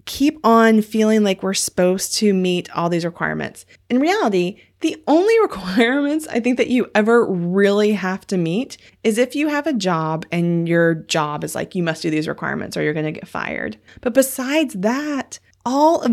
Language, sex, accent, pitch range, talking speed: English, female, American, 180-240 Hz, 190 wpm